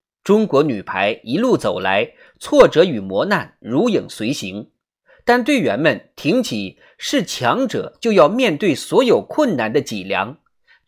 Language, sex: Chinese, male